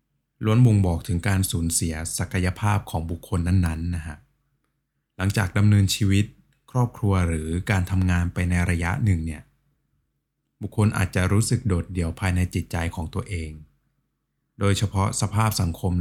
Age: 20-39